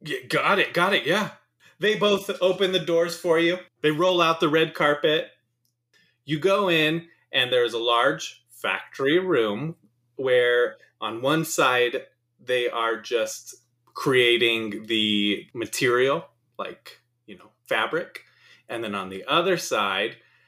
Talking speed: 140 wpm